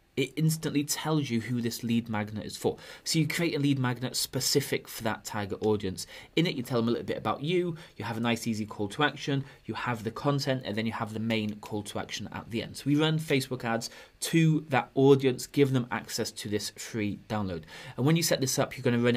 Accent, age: British, 30-49